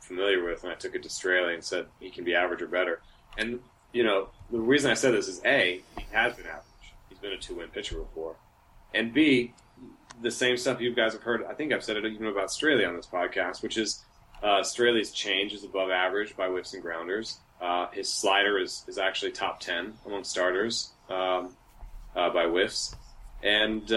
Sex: male